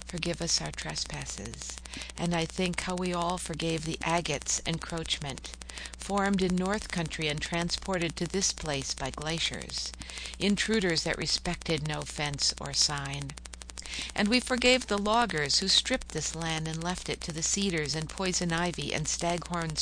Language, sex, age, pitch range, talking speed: English, female, 60-79, 125-180 Hz, 155 wpm